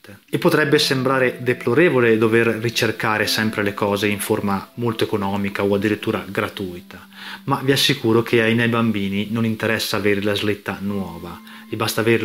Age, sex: 30-49, male